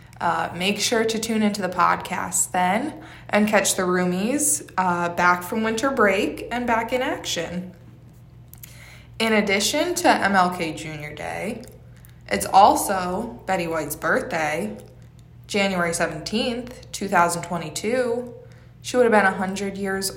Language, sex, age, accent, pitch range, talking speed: English, female, 20-39, American, 170-215 Hz, 130 wpm